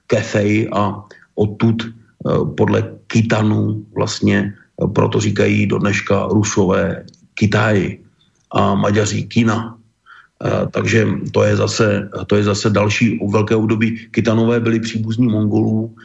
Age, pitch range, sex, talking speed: 40-59, 100-110 Hz, male, 100 wpm